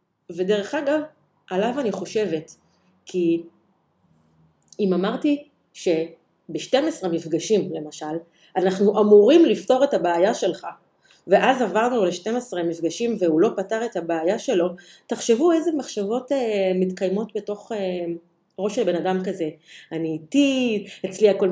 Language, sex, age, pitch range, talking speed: Hebrew, female, 30-49, 180-260 Hz, 115 wpm